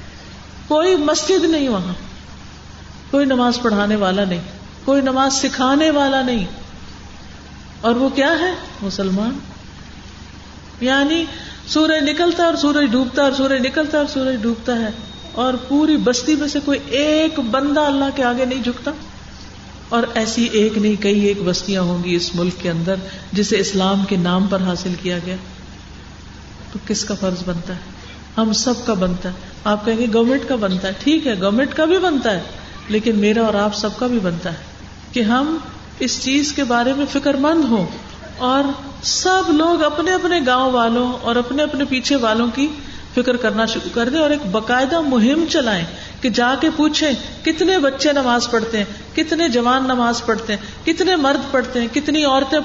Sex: female